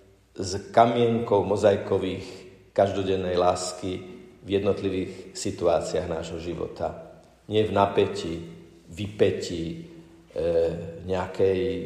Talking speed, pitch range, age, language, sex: 80 wpm, 90-110 Hz, 50-69, Slovak, male